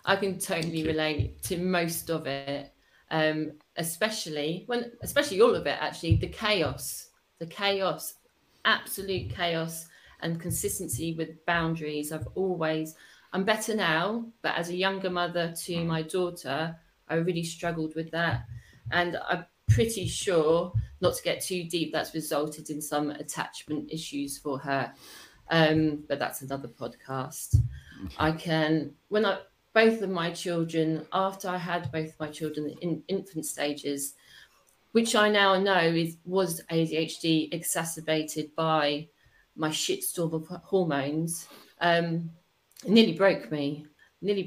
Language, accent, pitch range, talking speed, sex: English, British, 150-175 Hz, 135 wpm, female